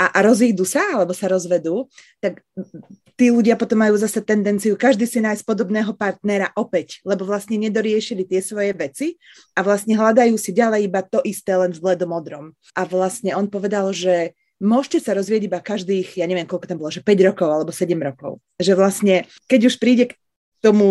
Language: Slovak